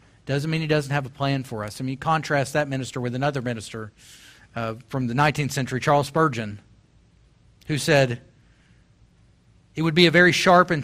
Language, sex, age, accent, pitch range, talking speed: English, male, 40-59, American, 110-155 Hz, 185 wpm